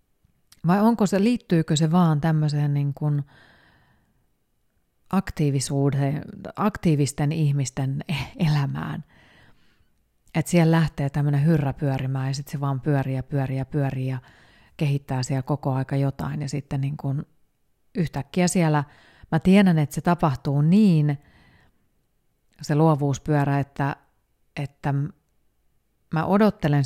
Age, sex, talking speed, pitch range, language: 30-49, female, 115 wpm, 135-160 Hz, Finnish